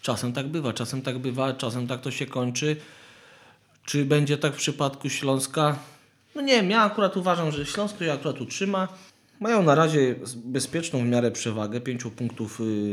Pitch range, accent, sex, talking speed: 125-160 Hz, native, male, 170 wpm